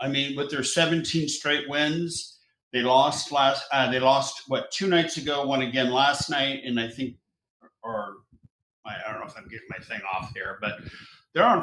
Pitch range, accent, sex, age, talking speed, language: 120-140 Hz, American, male, 50-69, 195 wpm, English